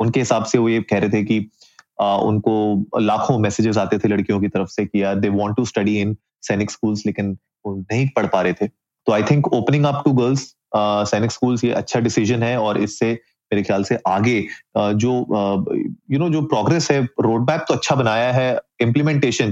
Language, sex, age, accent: Hindi, male, 30-49, native